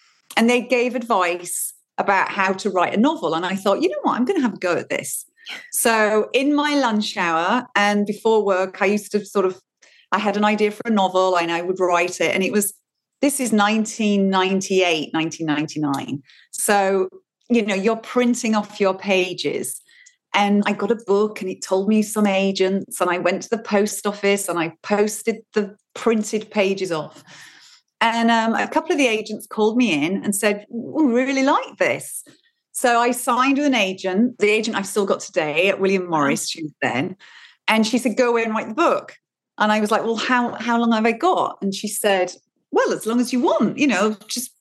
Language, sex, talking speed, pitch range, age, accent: English, female, 210 wpm, 190-245 Hz, 40-59, British